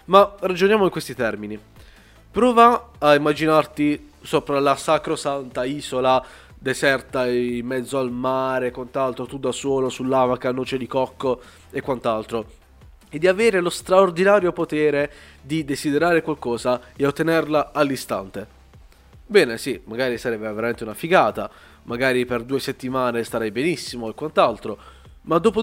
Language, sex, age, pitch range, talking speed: Italian, male, 20-39, 125-175 Hz, 135 wpm